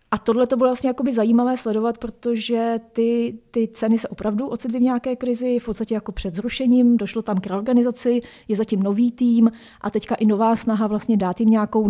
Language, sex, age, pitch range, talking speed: Czech, female, 30-49, 195-230 Hz, 185 wpm